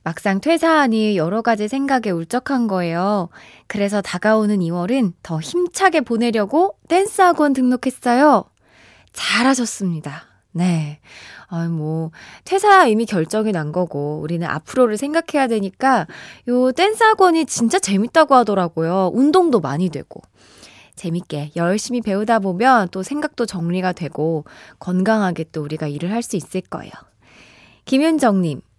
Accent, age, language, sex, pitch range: native, 20-39, Korean, female, 180-270 Hz